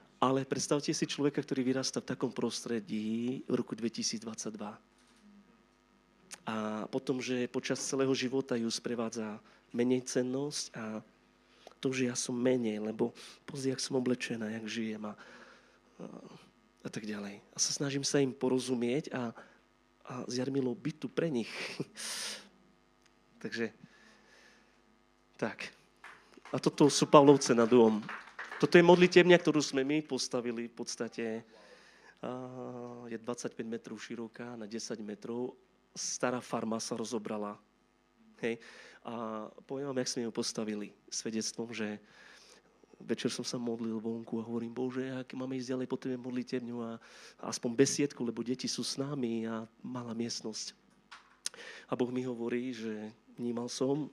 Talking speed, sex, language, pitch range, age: 135 wpm, male, Slovak, 115-130 Hz, 30-49